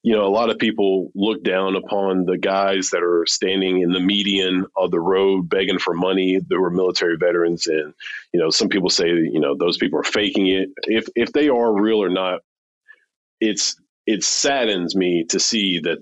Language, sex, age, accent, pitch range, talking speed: English, male, 30-49, American, 90-120 Hz, 200 wpm